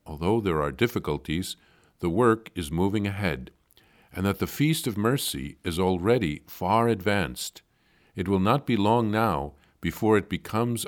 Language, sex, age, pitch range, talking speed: English, male, 50-69, 80-100 Hz, 155 wpm